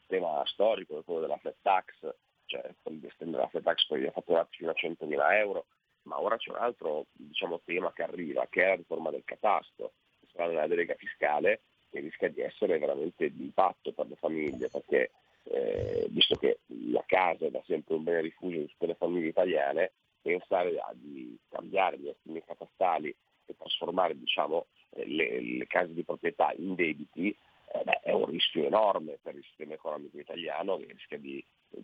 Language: Italian